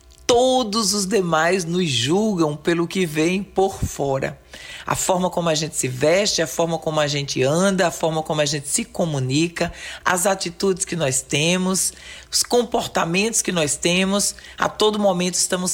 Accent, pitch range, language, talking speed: Brazilian, 165-205 Hz, Portuguese, 170 wpm